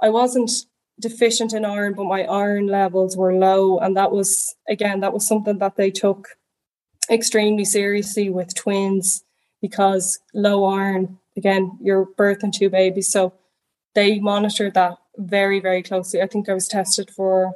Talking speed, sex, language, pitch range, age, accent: 160 wpm, female, English, 185-210 Hz, 10-29, Irish